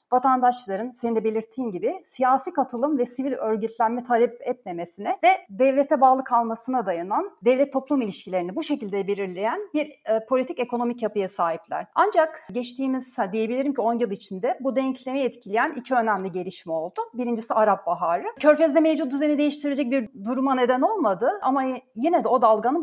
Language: Turkish